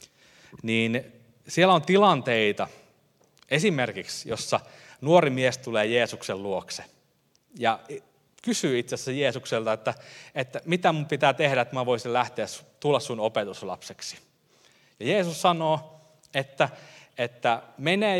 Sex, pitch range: male, 115-155 Hz